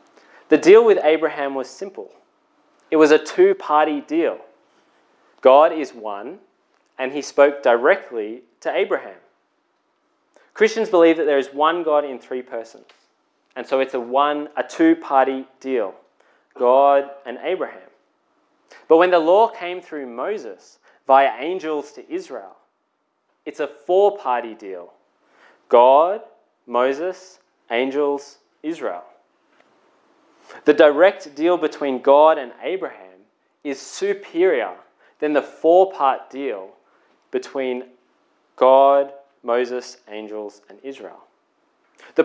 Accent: Australian